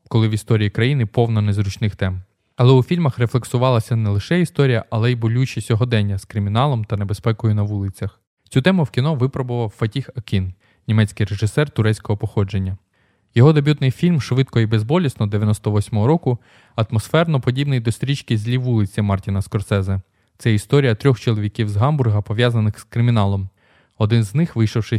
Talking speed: 155 wpm